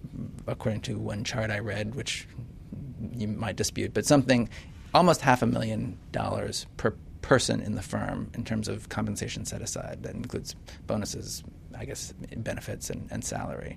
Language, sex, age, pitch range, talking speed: English, male, 30-49, 85-120 Hz, 160 wpm